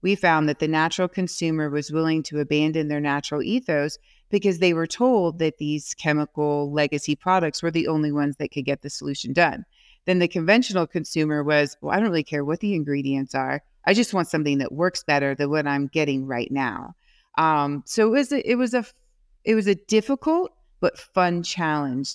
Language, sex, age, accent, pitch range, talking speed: English, female, 30-49, American, 145-170 Hz, 200 wpm